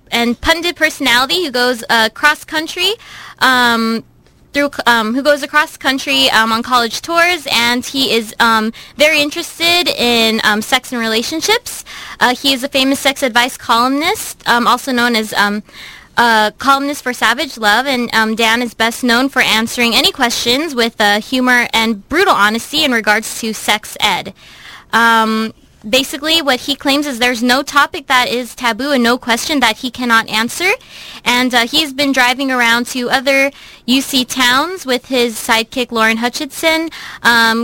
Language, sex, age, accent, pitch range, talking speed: English, female, 20-39, American, 225-275 Hz, 165 wpm